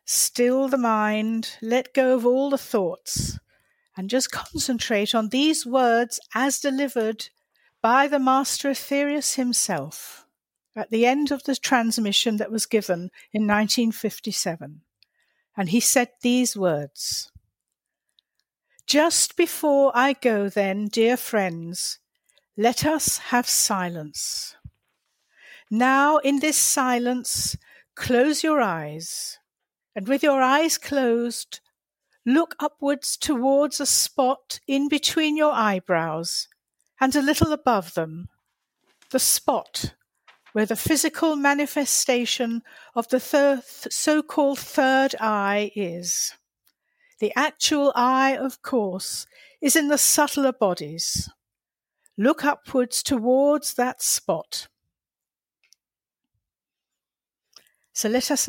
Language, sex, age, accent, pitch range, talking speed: English, female, 60-79, British, 215-280 Hz, 110 wpm